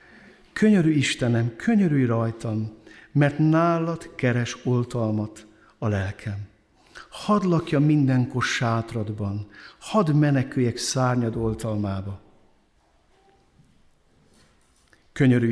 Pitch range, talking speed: 105-130 Hz, 75 wpm